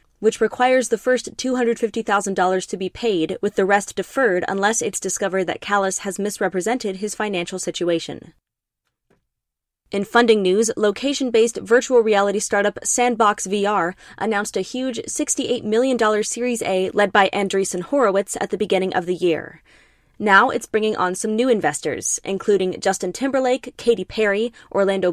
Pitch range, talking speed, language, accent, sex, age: 195-240 Hz, 145 wpm, English, American, female, 20-39